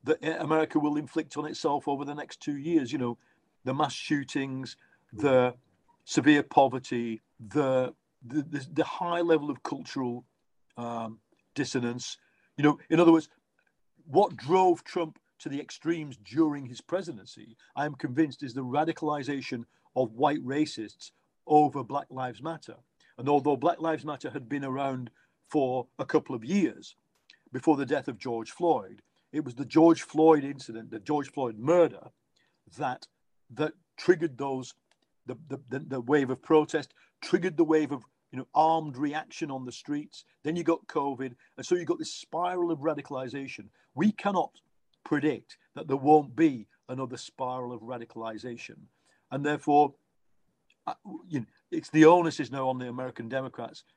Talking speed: 160 wpm